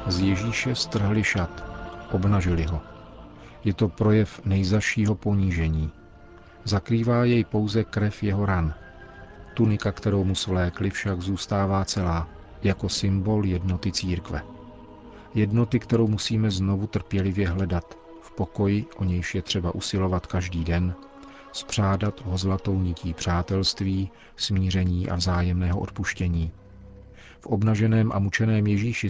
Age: 40-59